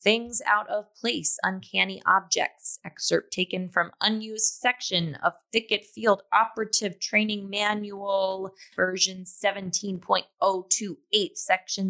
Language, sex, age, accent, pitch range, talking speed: English, female, 20-39, American, 185-225 Hz, 100 wpm